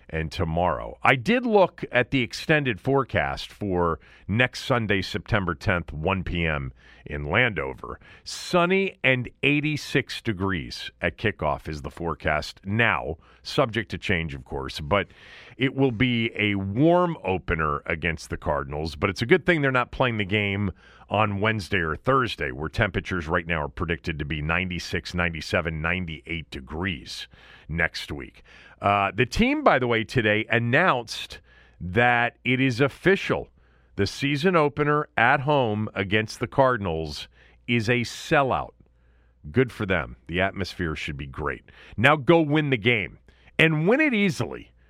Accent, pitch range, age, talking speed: American, 85-135 Hz, 40-59, 150 wpm